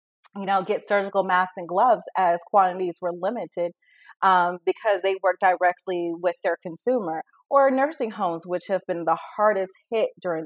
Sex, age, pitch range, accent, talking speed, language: female, 30-49, 175-230 Hz, American, 165 wpm, English